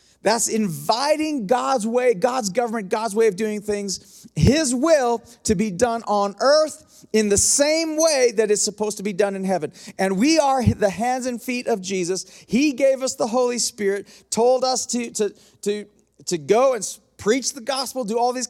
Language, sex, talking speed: English, male, 185 wpm